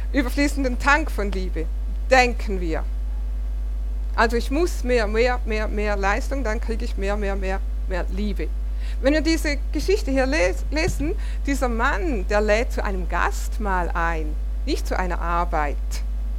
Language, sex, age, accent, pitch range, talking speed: German, female, 50-69, German, 180-255 Hz, 150 wpm